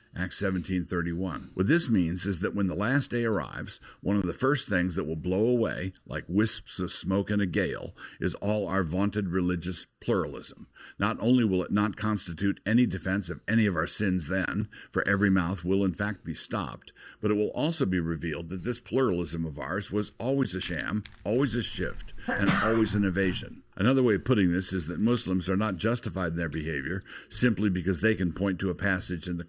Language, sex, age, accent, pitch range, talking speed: English, male, 60-79, American, 90-110 Hz, 205 wpm